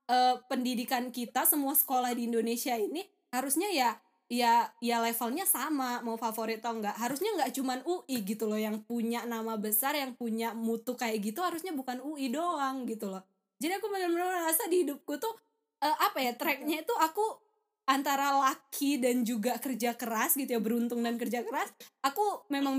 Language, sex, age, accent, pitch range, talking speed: Indonesian, female, 20-39, native, 230-280 Hz, 175 wpm